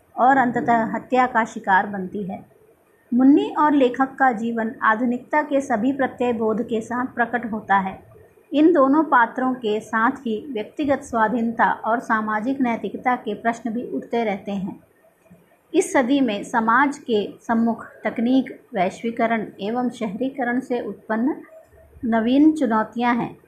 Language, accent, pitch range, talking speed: Hindi, native, 220-265 Hz, 140 wpm